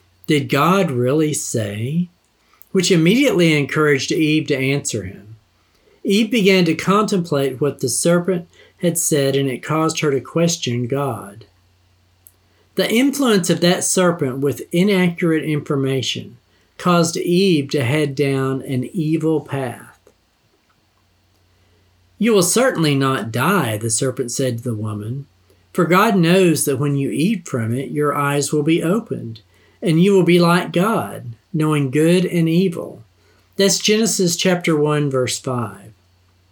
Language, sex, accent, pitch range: English, male, American, 120-175 Hz